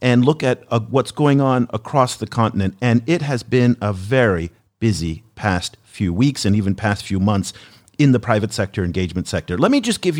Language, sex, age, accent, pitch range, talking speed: English, male, 40-59, American, 105-140 Hz, 205 wpm